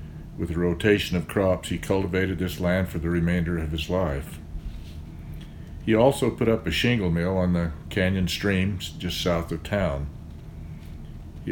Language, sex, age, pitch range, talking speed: English, male, 60-79, 80-95 Hz, 160 wpm